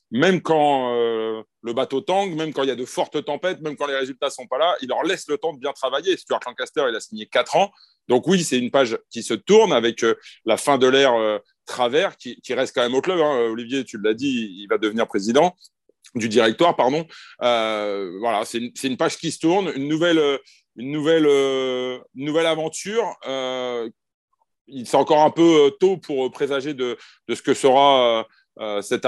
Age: 30-49